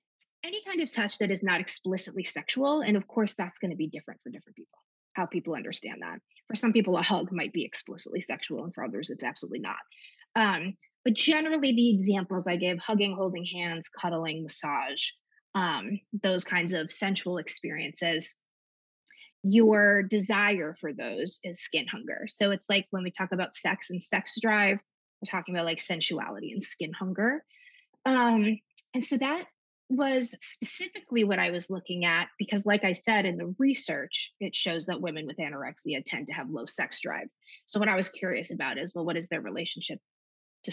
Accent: American